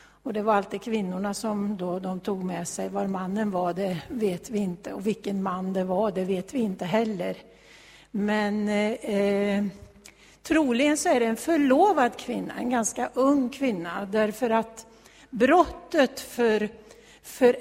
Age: 60-79